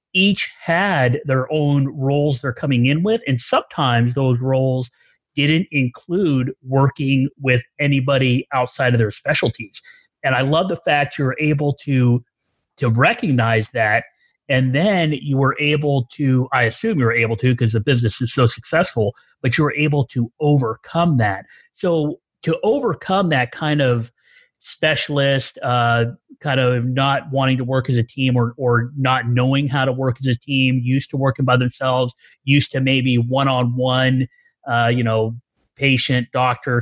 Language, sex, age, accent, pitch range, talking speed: English, male, 30-49, American, 125-145 Hz, 160 wpm